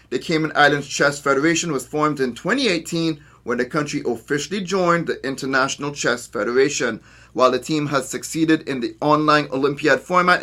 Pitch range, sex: 135-185 Hz, male